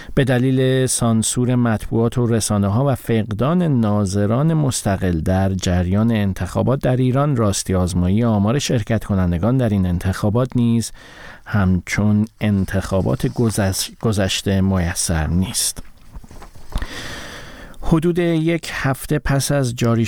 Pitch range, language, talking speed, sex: 95-125 Hz, Persian, 110 wpm, male